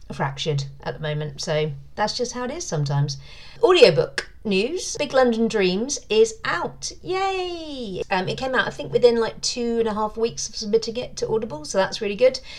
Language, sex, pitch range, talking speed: English, female, 155-195 Hz, 195 wpm